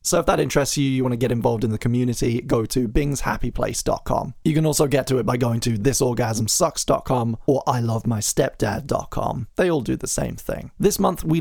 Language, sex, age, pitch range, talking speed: English, male, 20-39, 125-155 Hz, 195 wpm